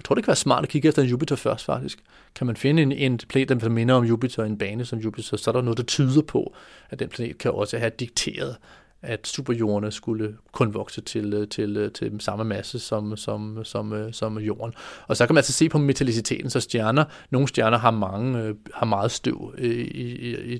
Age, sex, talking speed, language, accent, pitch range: 30-49, male, 225 wpm, Danish, native, 110-135 Hz